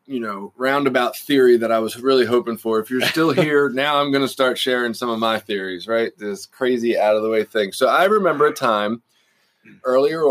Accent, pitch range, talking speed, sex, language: American, 110-130 Hz, 220 wpm, male, English